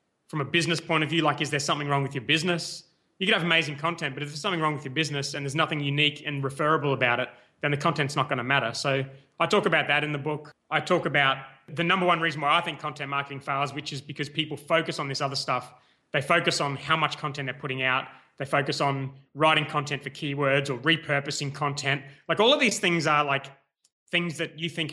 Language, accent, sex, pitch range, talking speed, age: English, Australian, male, 135-160 Hz, 245 wpm, 20-39